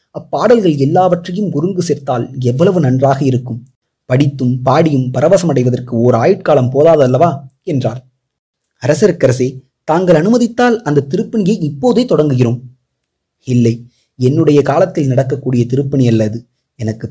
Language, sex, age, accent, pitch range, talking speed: Tamil, male, 30-49, native, 125-175 Hz, 100 wpm